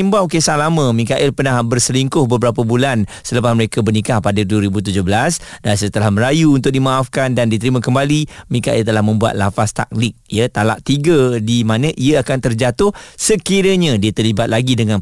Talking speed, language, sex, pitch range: 155 wpm, Malay, male, 110-140 Hz